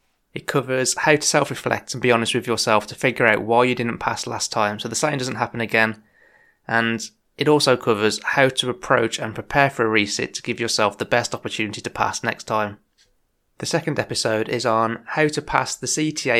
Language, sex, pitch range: English, male, 110-125 Hz